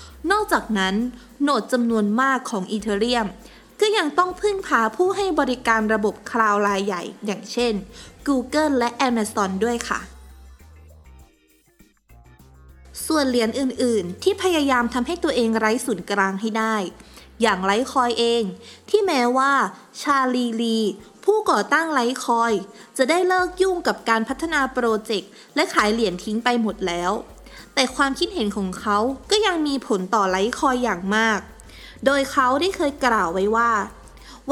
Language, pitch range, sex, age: Thai, 205-270 Hz, female, 20-39